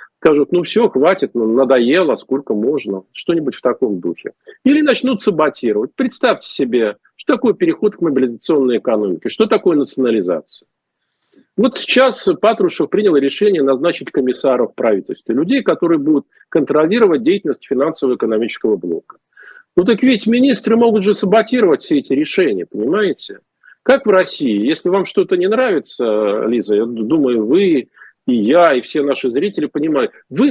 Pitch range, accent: 190-320 Hz, native